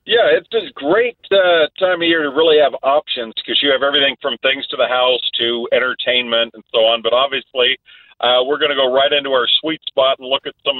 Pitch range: 120-150 Hz